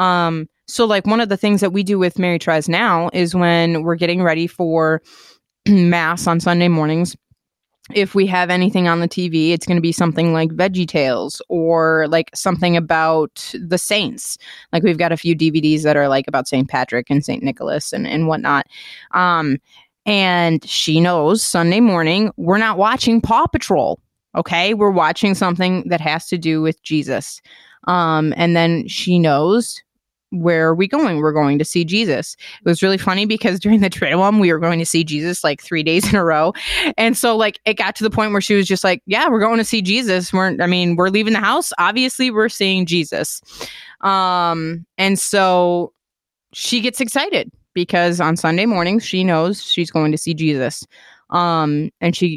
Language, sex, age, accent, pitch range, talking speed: English, female, 20-39, American, 165-205 Hz, 195 wpm